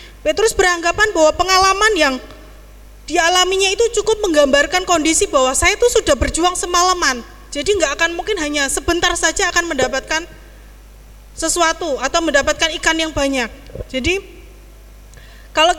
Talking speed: 125 wpm